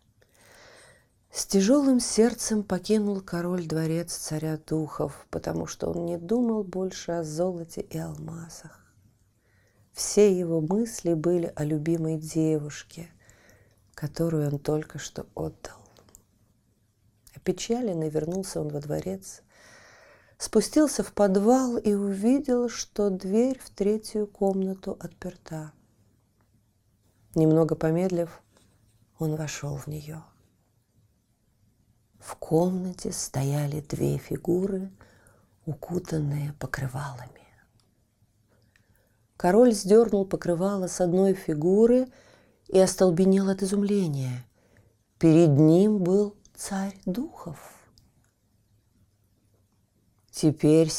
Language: Russian